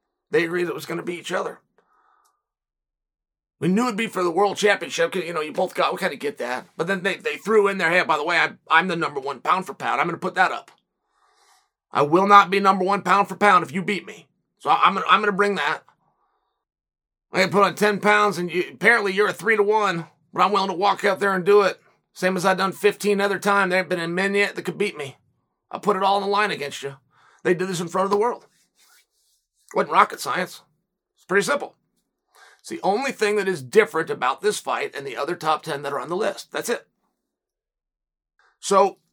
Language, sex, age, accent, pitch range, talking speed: English, male, 40-59, American, 185-235 Hz, 255 wpm